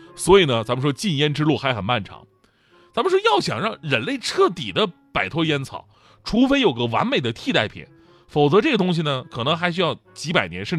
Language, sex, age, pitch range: Chinese, male, 30-49, 120-195 Hz